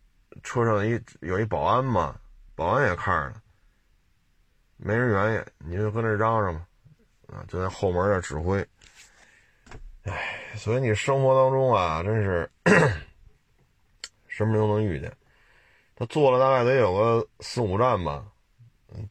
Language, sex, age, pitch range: Chinese, male, 30-49, 95-125 Hz